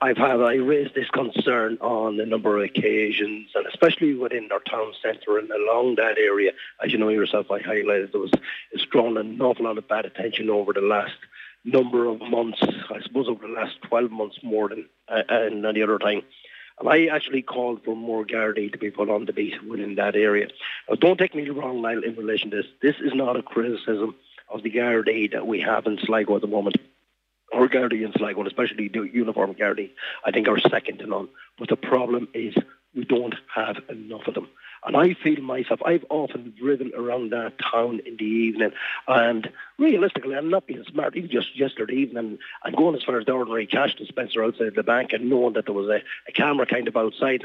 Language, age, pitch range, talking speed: English, 30-49, 110-135 Hz, 210 wpm